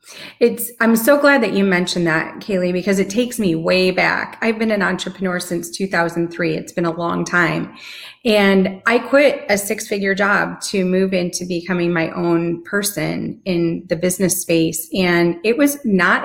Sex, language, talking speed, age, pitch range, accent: female, English, 175 wpm, 30-49, 180-225 Hz, American